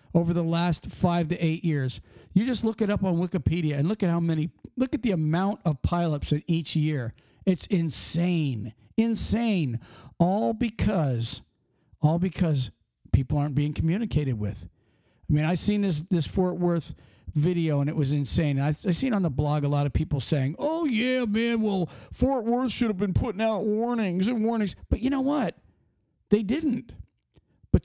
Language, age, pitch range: English, 50-69, 145-210 Hz